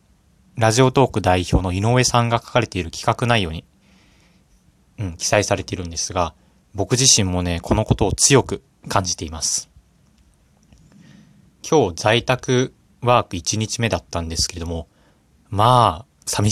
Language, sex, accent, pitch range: Japanese, male, native, 85-110 Hz